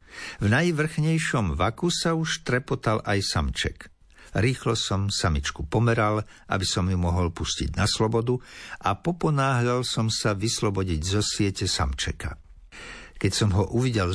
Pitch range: 90-120 Hz